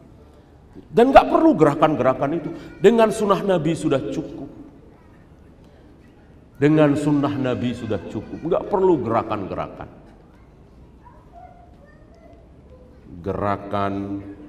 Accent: native